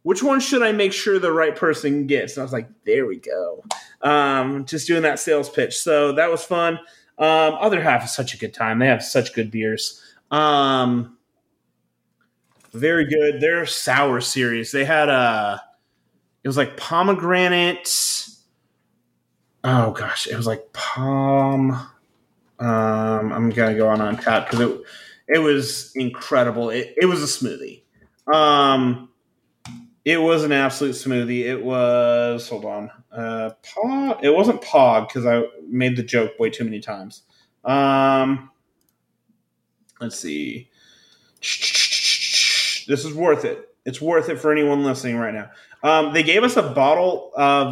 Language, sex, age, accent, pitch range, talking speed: English, male, 30-49, American, 125-160 Hz, 155 wpm